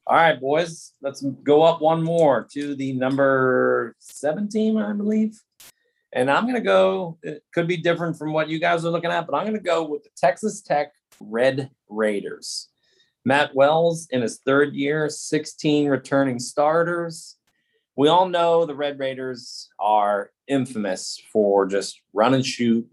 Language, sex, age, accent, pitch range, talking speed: English, male, 30-49, American, 125-165 Hz, 165 wpm